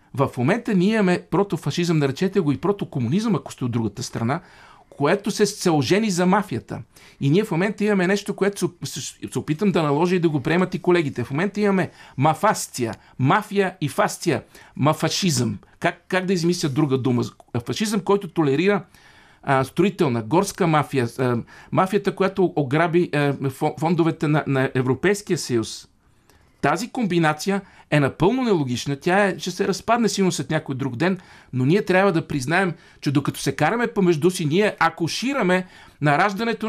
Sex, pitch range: male, 135-190 Hz